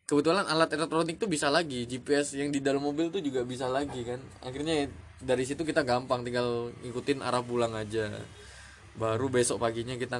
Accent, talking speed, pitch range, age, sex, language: native, 175 wpm, 115-140 Hz, 20-39, male, Indonesian